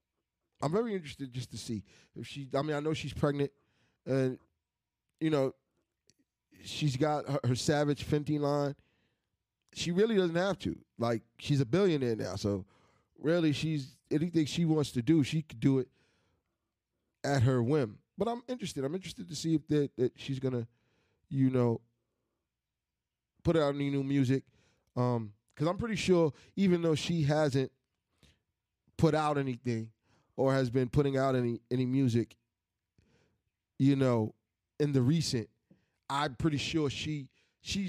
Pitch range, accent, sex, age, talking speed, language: 115-145 Hz, American, male, 20-39, 155 wpm, English